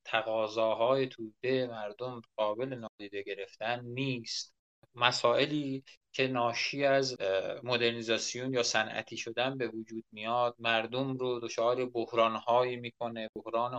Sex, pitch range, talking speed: male, 115-135 Hz, 105 wpm